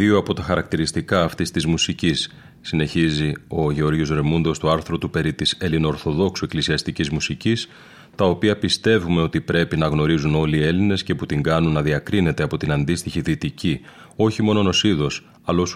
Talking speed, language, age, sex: 165 wpm, Greek, 30-49, male